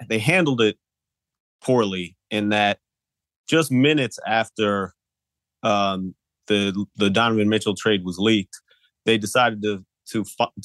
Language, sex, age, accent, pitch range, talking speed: English, male, 30-49, American, 100-115 Hz, 125 wpm